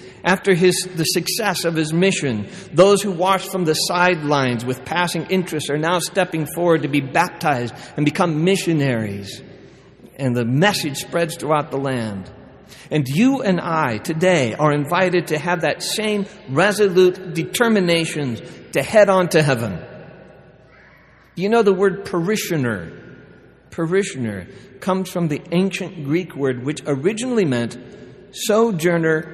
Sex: male